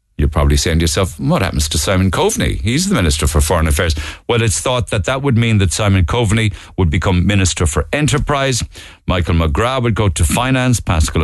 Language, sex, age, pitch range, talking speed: English, male, 50-69, 85-110 Hz, 205 wpm